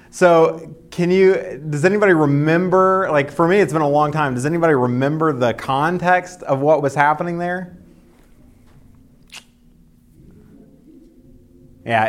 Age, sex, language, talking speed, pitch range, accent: 30-49, male, English, 125 wpm, 125-165 Hz, American